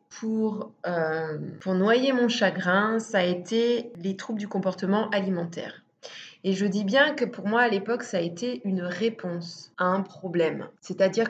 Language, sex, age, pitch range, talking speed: French, female, 20-39, 190-230 Hz, 170 wpm